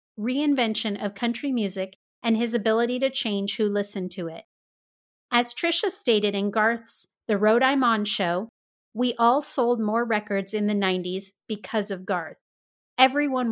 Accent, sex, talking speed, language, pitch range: American, female, 155 wpm, English, 205-255 Hz